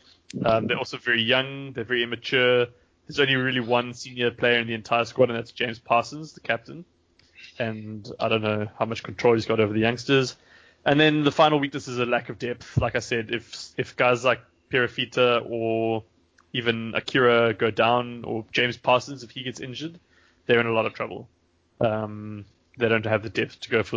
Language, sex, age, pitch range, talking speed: English, male, 20-39, 115-125 Hz, 205 wpm